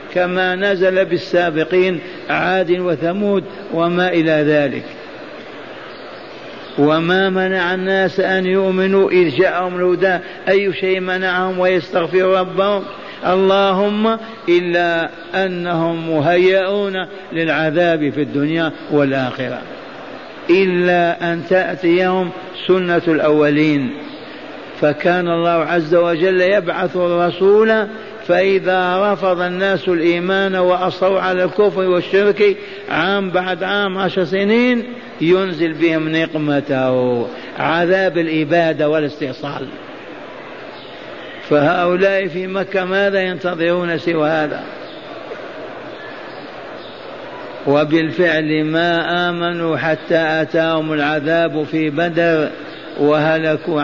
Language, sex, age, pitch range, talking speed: Arabic, male, 60-79, 160-190 Hz, 85 wpm